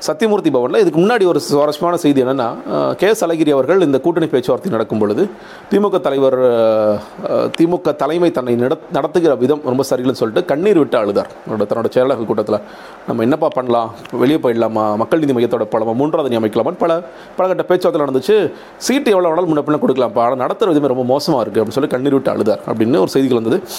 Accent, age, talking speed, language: native, 40-59, 170 wpm, Tamil